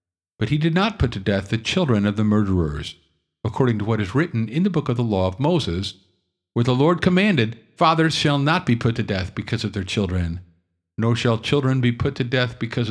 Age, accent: 50-69, American